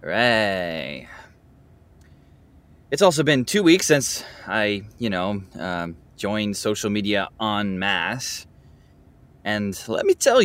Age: 20-39